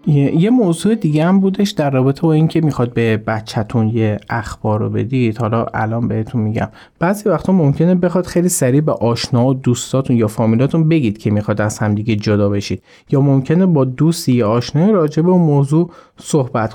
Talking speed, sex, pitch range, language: 185 wpm, male, 115-155 Hz, Persian